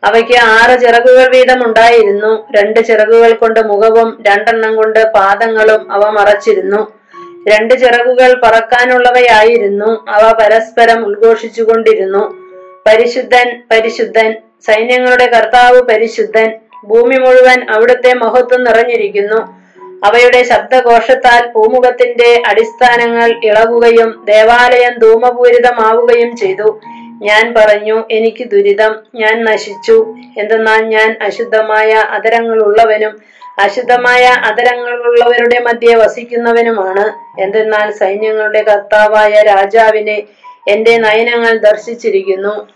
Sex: female